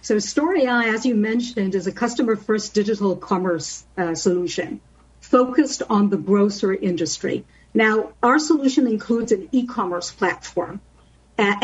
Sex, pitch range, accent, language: female, 200-250 Hz, American, English